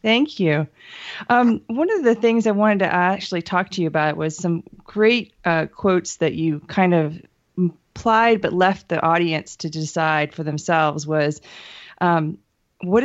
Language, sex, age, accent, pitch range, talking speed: English, female, 20-39, American, 165-195 Hz, 165 wpm